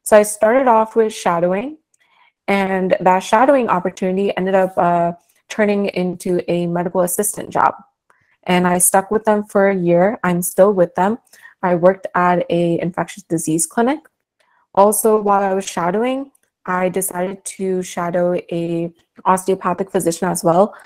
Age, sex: 20-39, female